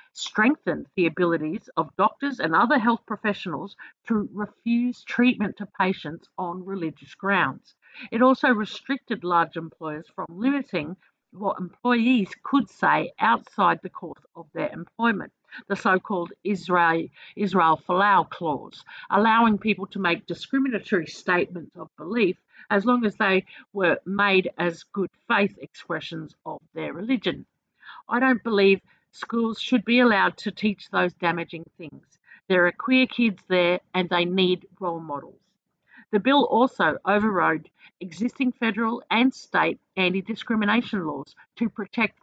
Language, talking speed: English, 135 wpm